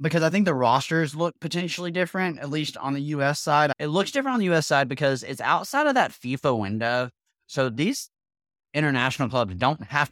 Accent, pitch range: American, 110-140 Hz